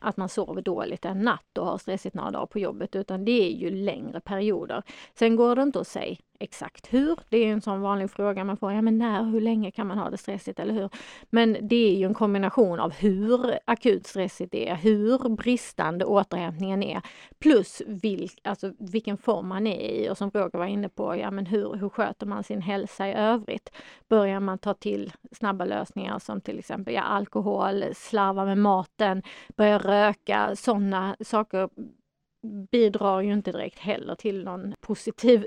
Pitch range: 195-230 Hz